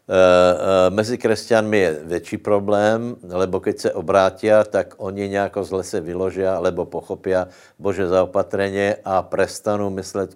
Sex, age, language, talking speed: male, 60-79, Slovak, 140 wpm